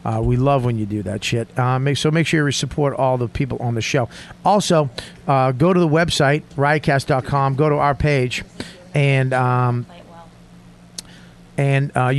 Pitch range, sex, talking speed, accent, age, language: 120-150 Hz, male, 175 wpm, American, 40-59, English